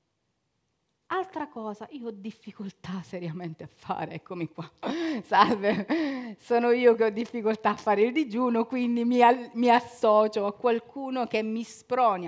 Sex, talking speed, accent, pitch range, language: female, 140 wpm, native, 165-235 Hz, Italian